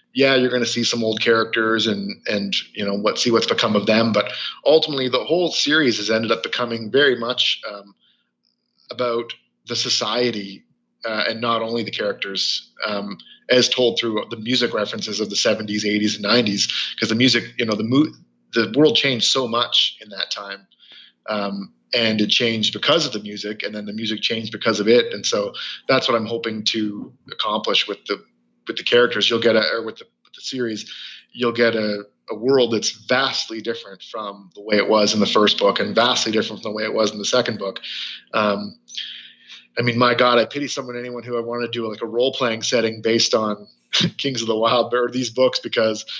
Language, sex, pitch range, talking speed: English, male, 105-120 Hz, 205 wpm